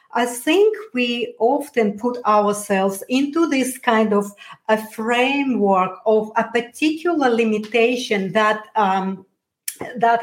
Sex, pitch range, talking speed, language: female, 195-235 Hz, 110 wpm, English